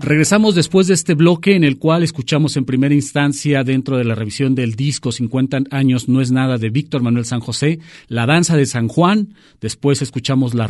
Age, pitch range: 40-59, 120-150 Hz